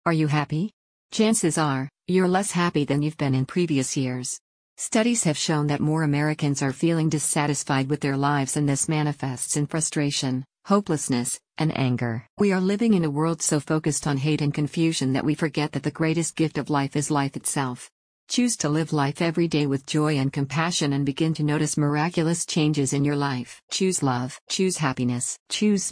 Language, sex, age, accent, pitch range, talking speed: English, female, 50-69, American, 140-165 Hz, 190 wpm